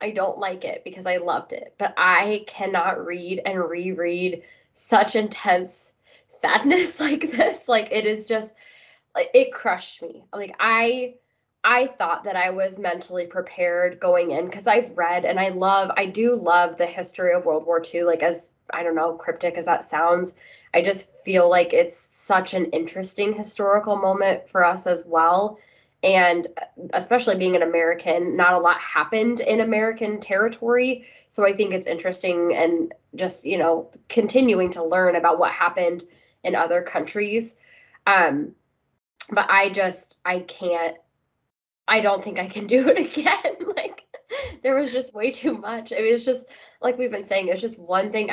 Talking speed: 175 wpm